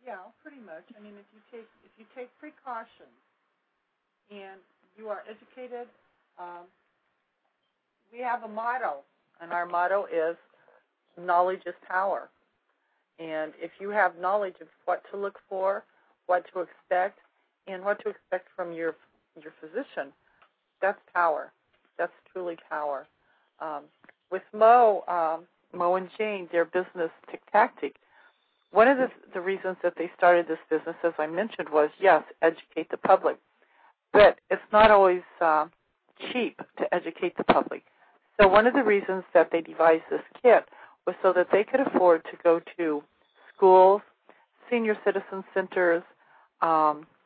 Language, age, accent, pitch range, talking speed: English, 50-69, American, 170-215 Hz, 150 wpm